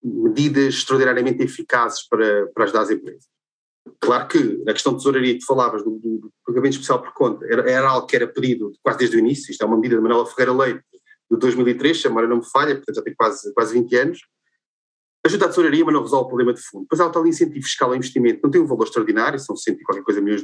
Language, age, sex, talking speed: Portuguese, 30-49, male, 245 wpm